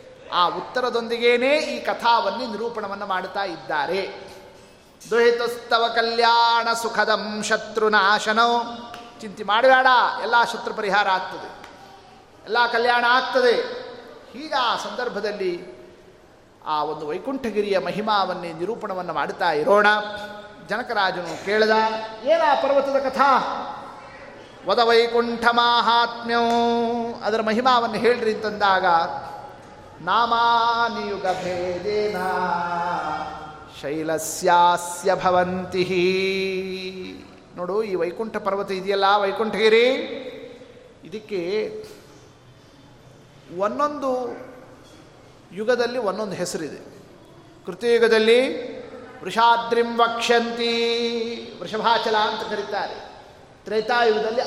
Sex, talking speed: male, 70 wpm